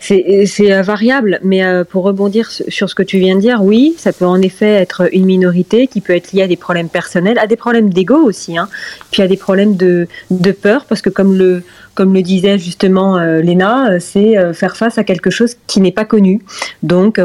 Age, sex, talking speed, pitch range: 30-49, female, 215 wpm, 180-215 Hz